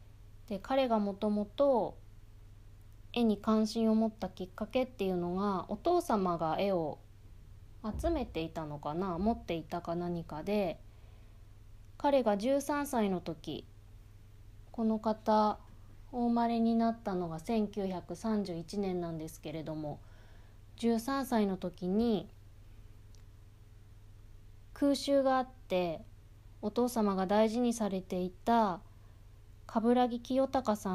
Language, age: Japanese, 20-39